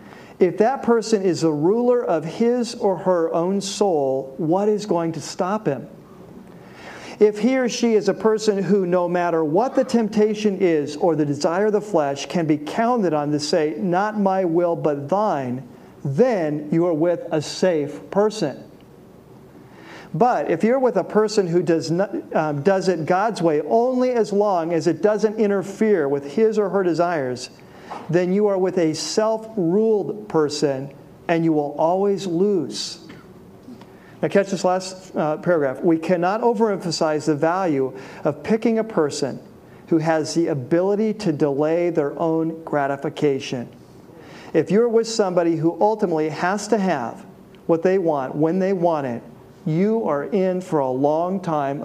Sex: male